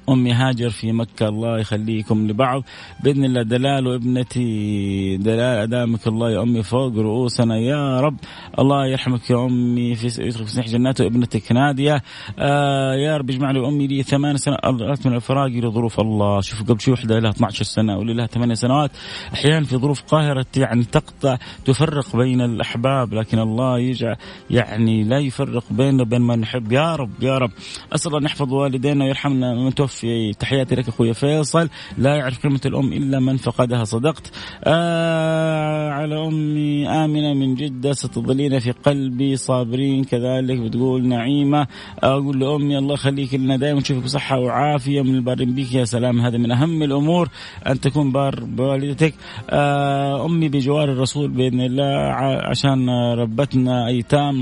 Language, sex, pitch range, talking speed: Arabic, male, 120-140 Hz, 145 wpm